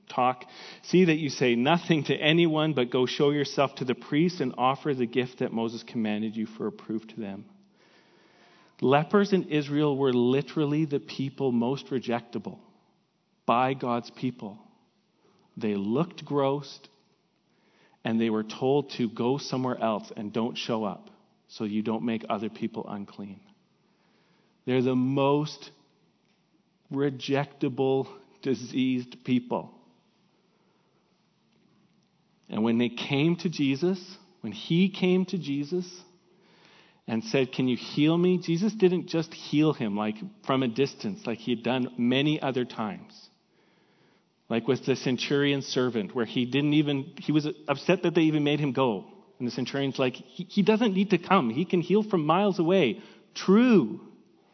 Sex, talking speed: male, 150 wpm